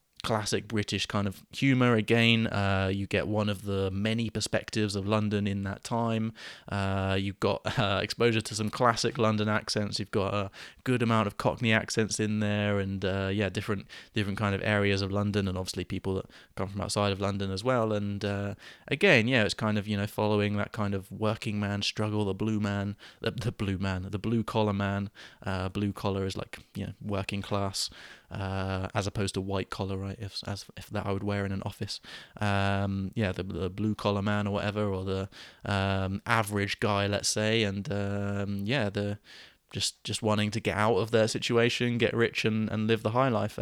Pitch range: 100-110 Hz